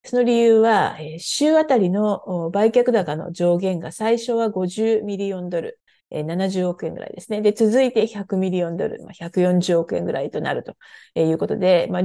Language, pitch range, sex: Japanese, 180-235 Hz, female